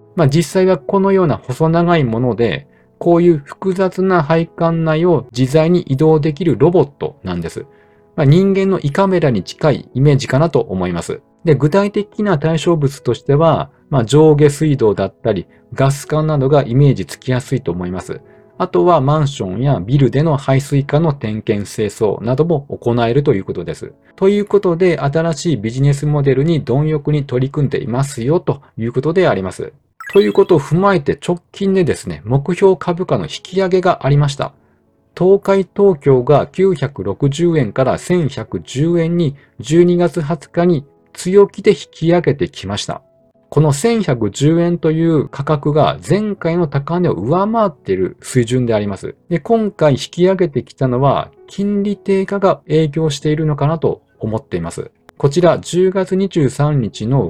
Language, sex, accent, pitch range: Japanese, male, native, 130-180 Hz